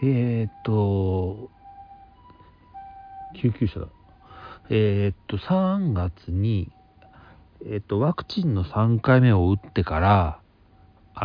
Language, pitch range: Japanese, 95-140 Hz